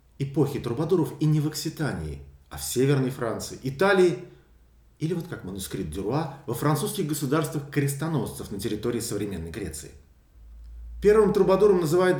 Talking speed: 135 wpm